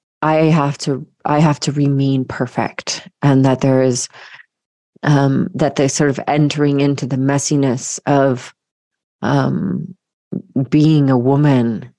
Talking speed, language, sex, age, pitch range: 130 wpm, English, female, 30-49, 145-165 Hz